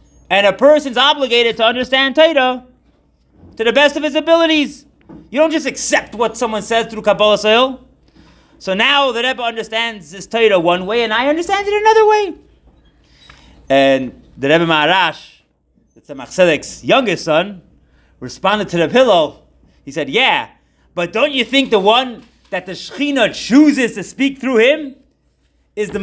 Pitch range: 200-265 Hz